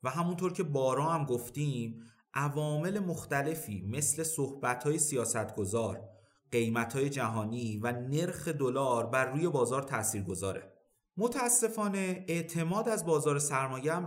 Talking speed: 125 wpm